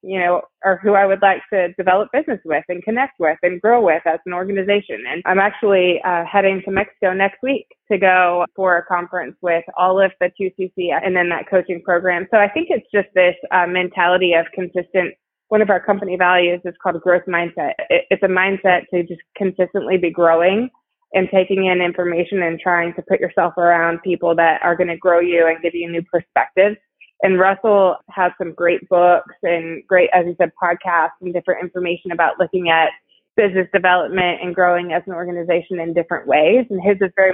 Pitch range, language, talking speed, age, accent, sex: 175-195 Hz, English, 200 wpm, 20-39, American, female